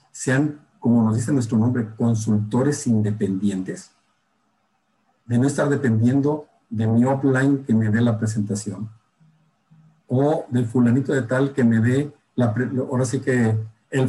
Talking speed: 135 wpm